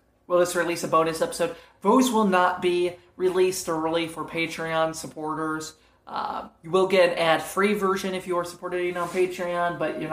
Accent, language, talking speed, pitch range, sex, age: American, English, 185 wpm, 160-190 Hz, male, 30-49